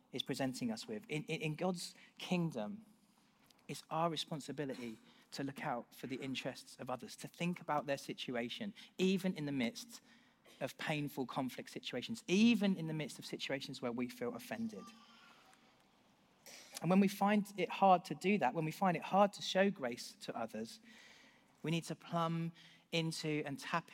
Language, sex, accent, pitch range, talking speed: English, male, British, 140-210 Hz, 170 wpm